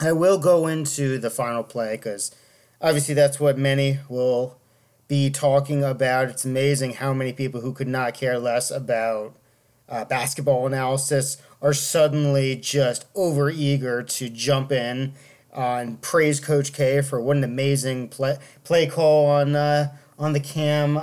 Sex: male